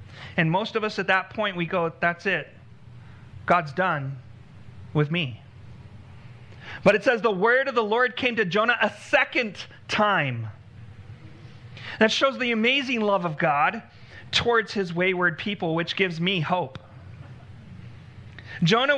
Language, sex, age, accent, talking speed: English, male, 40-59, American, 140 wpm